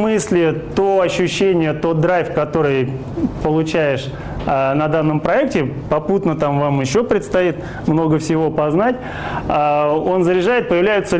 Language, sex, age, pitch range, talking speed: Russian, male, 20-39, 140-175 Hz, 120 wpm